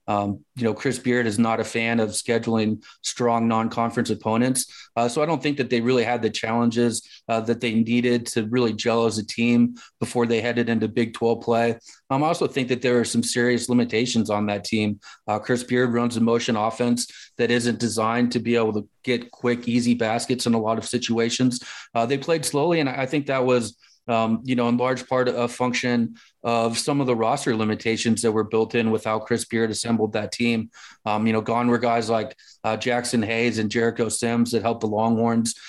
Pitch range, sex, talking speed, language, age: 115-120 Hz, male, 215 wpm, English, 30-49